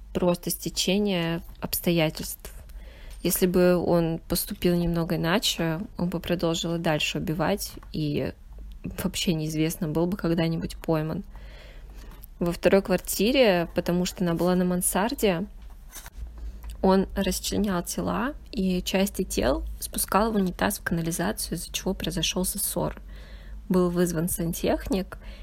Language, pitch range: Russian, 165-190 Hz